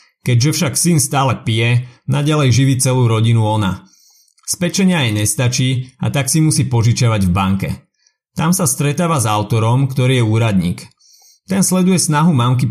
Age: 30-49